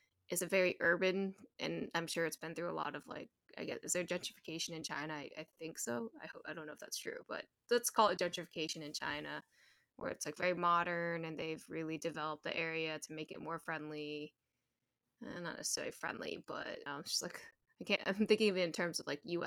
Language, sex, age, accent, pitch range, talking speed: English, female, 10-29, American, 160-185 Hz, 240 wpm